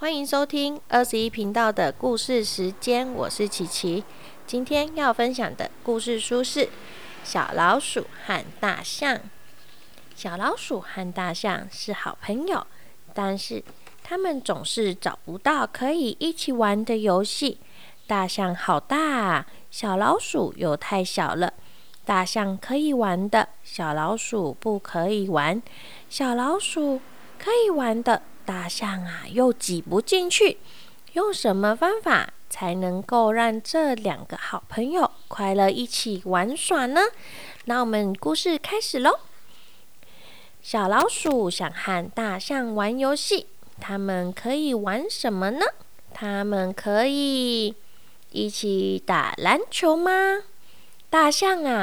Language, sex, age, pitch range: Chinese, female, 20-39, 195-295 Hz